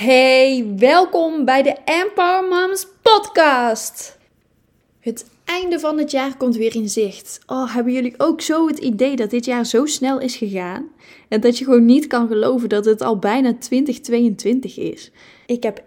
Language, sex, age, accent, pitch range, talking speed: Dutch, female, 10-29, Dutch, 220-300 Hz, 165 wpm